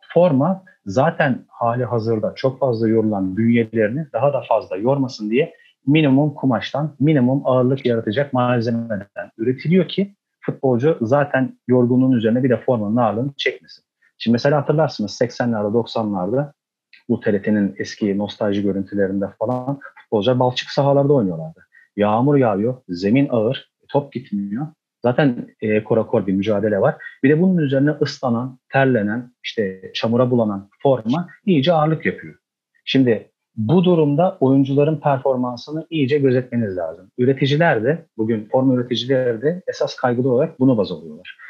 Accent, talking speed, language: native, 130 wpm, Turkish